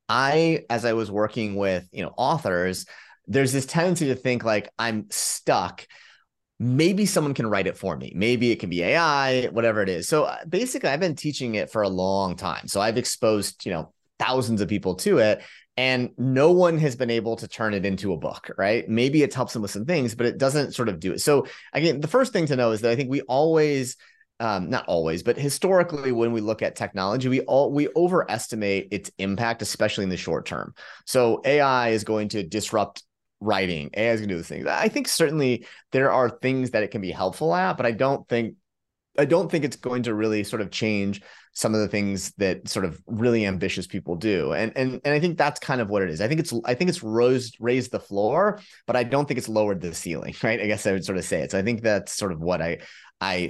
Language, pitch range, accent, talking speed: English, 100-135 Hz, American, 235 wpm